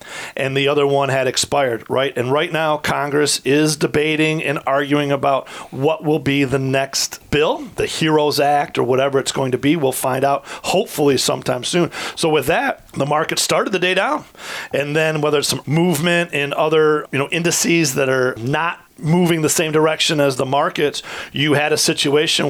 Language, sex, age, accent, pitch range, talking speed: English, male, 40-59, American, 135-155 Hz, 190 wpm